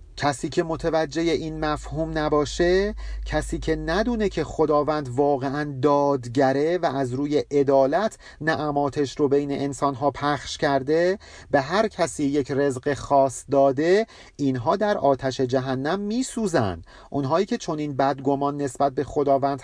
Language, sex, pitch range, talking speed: Persian, male, 145-185 Hz, 130 wpm